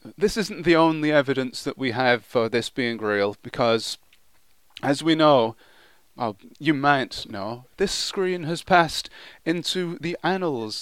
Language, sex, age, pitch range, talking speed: English, male, 30-49, 130-190 Hz, 150 wpm